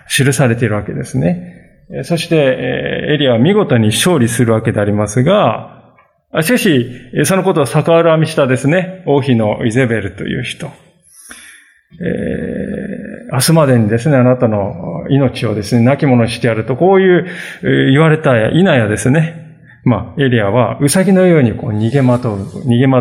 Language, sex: Japanese, male